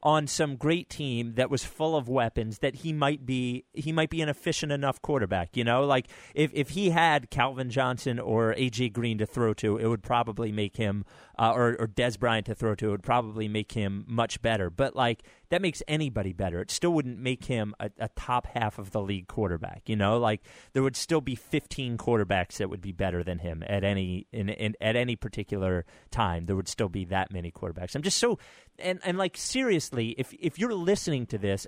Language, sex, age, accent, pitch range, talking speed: English, male, 30-49, American, 105-150 Hz, 220 wpm